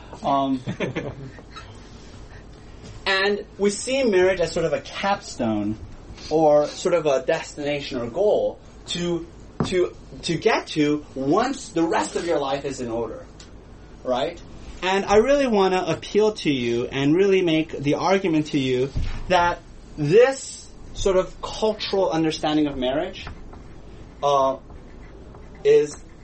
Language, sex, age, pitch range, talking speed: English, male, 30-49, 140-225 Hz, 135 wpm